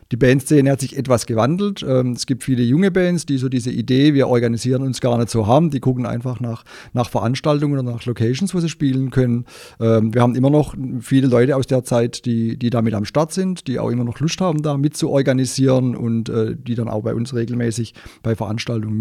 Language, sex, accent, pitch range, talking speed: German, male, German, 115-135 Hz, 220 wpm